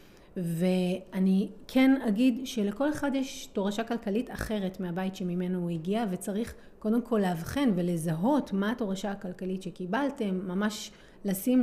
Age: 30-49